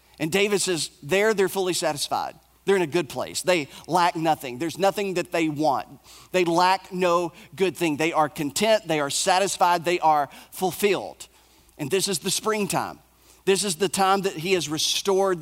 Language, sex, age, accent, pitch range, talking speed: English, male, 40-59, American, 155-195 Hz, 185 wpm